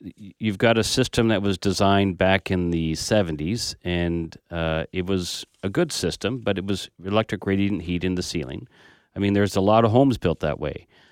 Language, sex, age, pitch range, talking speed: English, male, 40-59, 90-115 Hz, 200 wpm